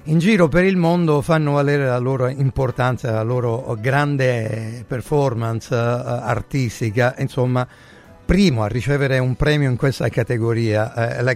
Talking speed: 130 wpm